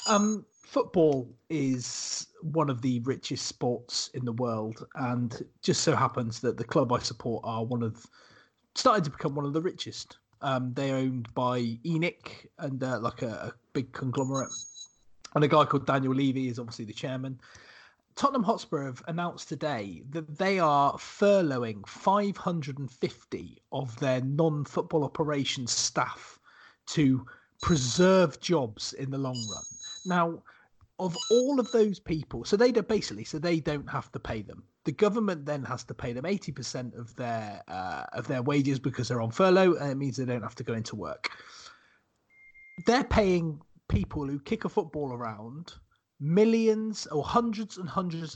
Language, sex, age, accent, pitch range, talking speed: English, male, 30-49, British, 125-175 Hz, 165 wpm